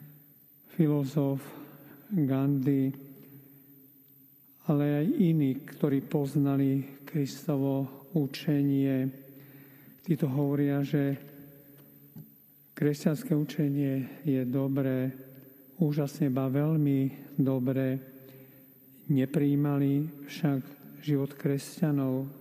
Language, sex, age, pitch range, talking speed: Slovak, male, 50-69, 135-145 Hz, 65 wpm